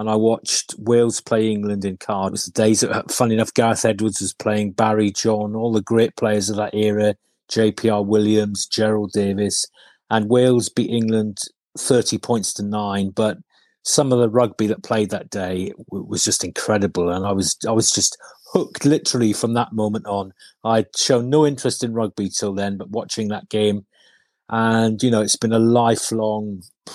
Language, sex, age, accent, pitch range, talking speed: English, male, 30-49, British, 105-115 Hz, 180 wpm